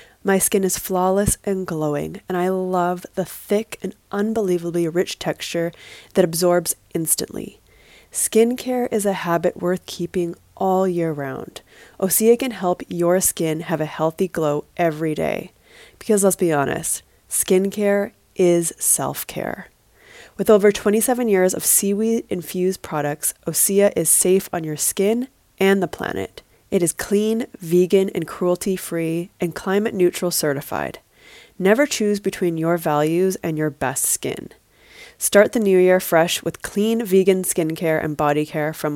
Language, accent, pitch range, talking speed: English, American, 170-200 Hz, 145 wpm